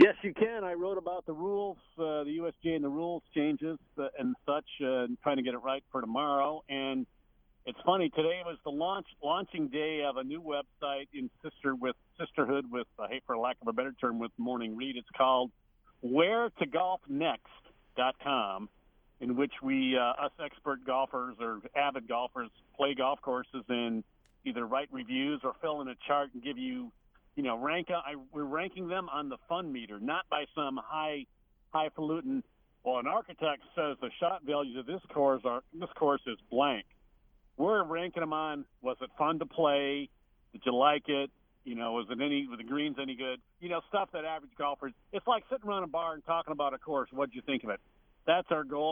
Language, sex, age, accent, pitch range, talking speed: English, male, 50-69, American, 130-180 Hz, 205 wpm